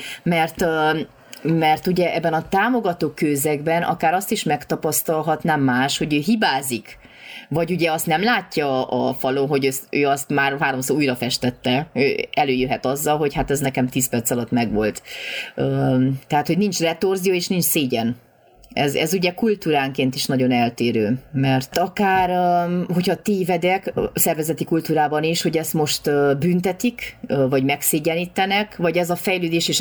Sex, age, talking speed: female, 30-49, 145 wpm